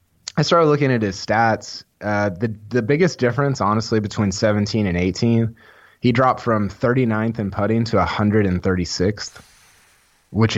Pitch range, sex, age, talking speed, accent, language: 95-120 Hz, male, 20-39, 140 wpm, American, English